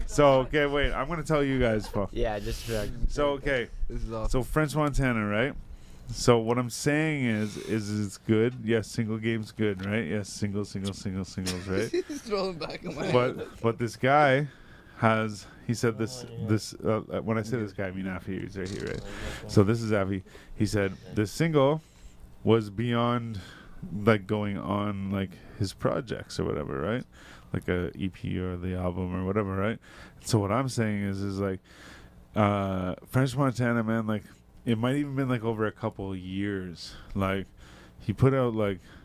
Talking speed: 175 wpm